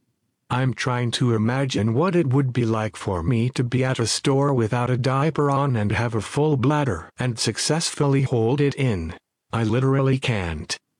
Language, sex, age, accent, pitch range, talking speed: Danish, male, 50-69, American, 110-140 Hz, 180 wpm